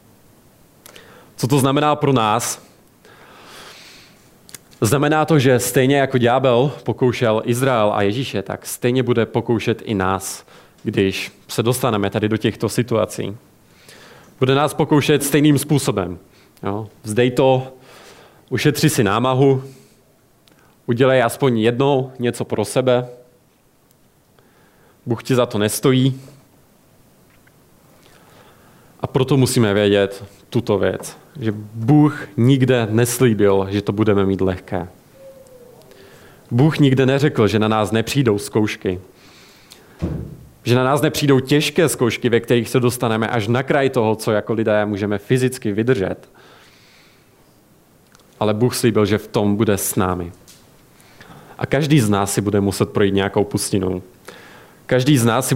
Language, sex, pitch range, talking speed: Czech, male, 105-135 Hz, 125 wpm